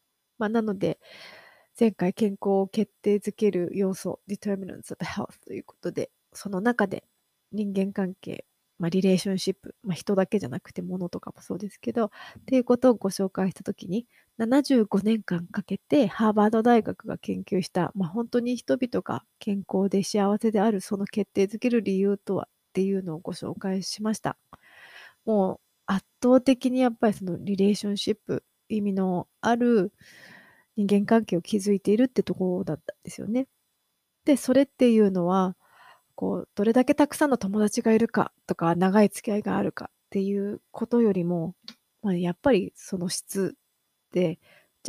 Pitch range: 190-230 Hz